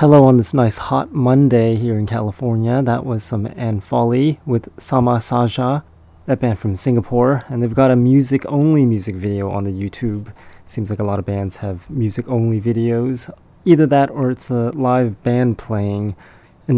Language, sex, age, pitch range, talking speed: English, male, 30-49, 105-130 Hz, 175 wpm